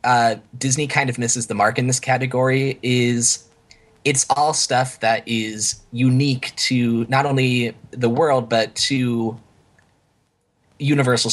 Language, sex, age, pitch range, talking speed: English, male, 20-39, 110-130 Hz, 130 wpm